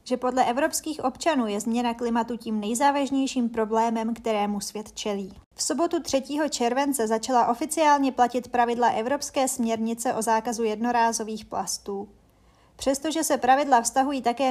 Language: Czech